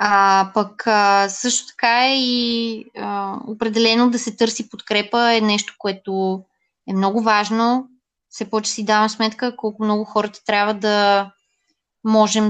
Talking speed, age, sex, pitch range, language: 140 wpm, 20-39, female, 200-240 Hz, Bulgarian